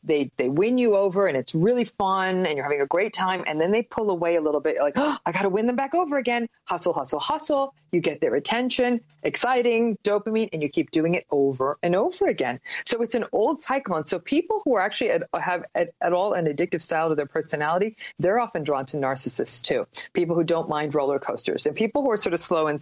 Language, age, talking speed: English, 40-59, 240 wpm